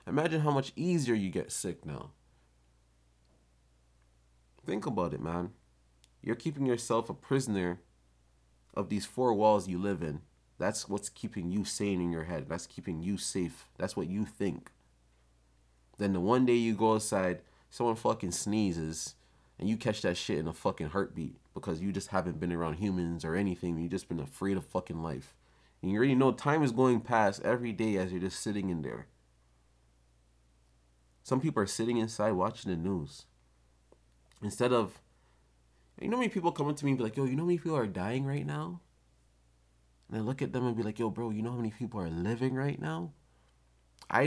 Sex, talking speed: male, 195 wpm